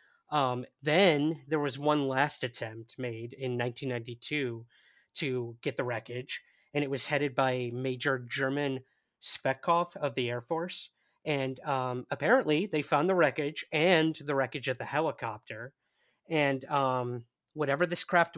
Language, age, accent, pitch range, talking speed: English, 30-49, American, 125-150 Hz, 145 wpm